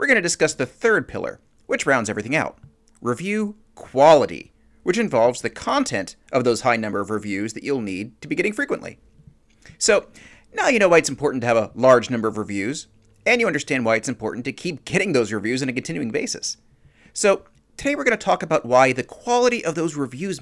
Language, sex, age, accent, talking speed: English, male, 40-59, American, 205 wpm